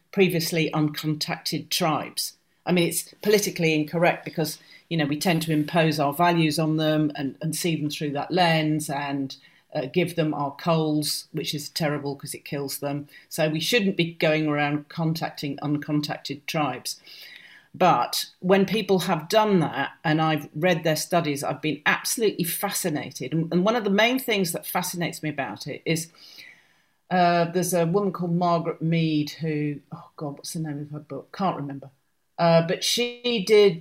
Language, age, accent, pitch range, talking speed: English, 40-59, British, 155-180 Hz, 170 wpm